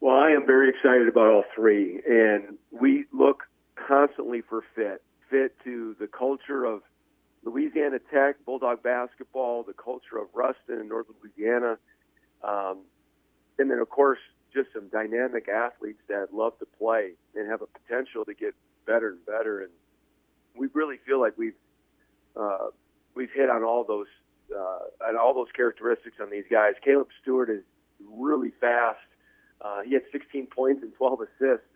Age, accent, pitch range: 50-69, American, 110-140 Hz